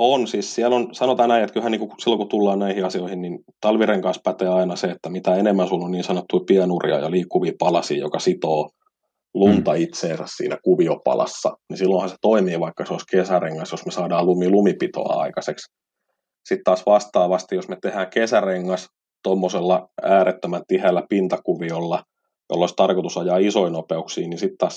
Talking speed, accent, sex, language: 165 wpm, native, male, Finnish